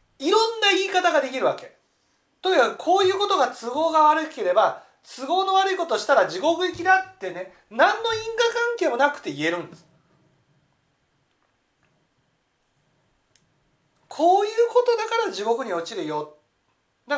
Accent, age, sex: native, 40-59, male